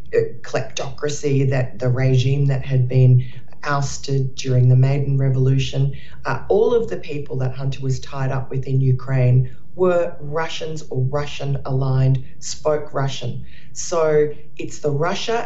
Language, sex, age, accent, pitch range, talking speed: English, female, 40-59, Australian, 130-150 Hz, 130 wpm